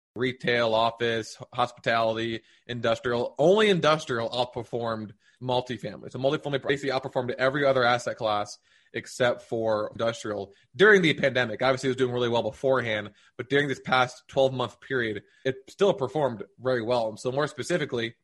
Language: English